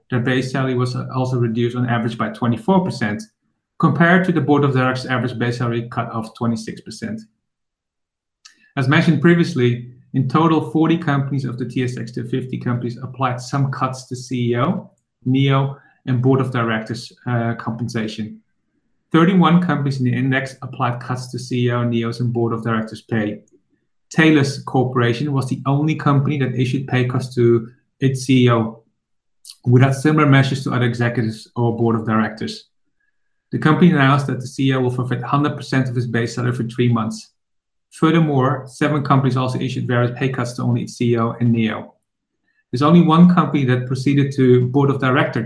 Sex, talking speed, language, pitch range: male, 165 wpm, English, 120-140 Hz